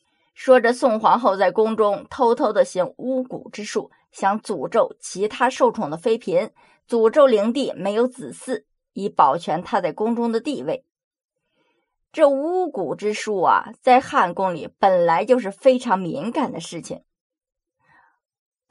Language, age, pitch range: Chinese, 20-39, 200-280 Hz